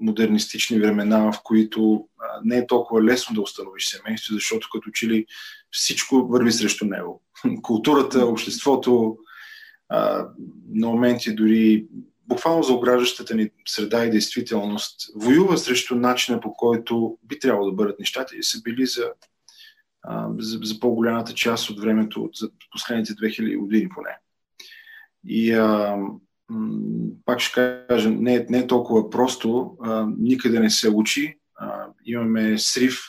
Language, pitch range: Bulgarian, 110-130 Hz